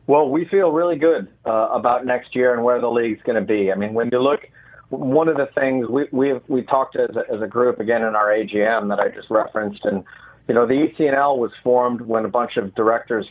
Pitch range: 110-130 Hz